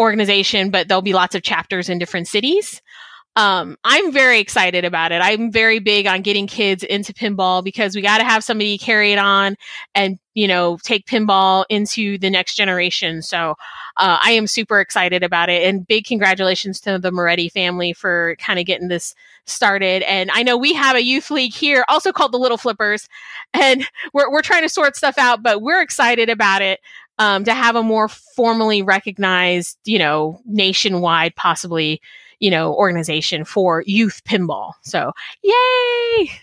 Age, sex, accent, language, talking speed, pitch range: 20-39, female, American, English, 180 wpm, 185-255 Hz